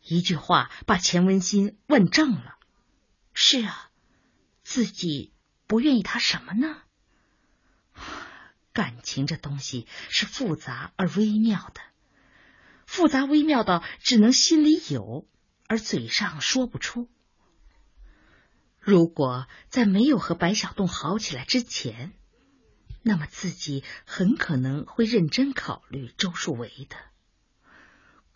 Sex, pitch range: female, 155-230 Hz